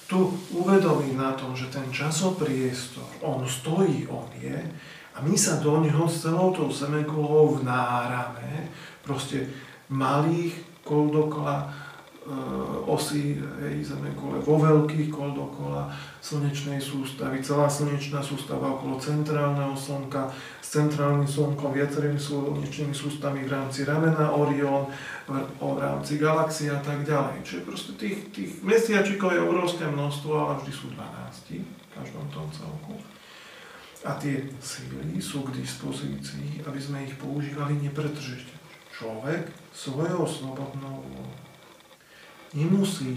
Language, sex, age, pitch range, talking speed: Slovak, male, 40-59, 125-150 Hz, 120 wpm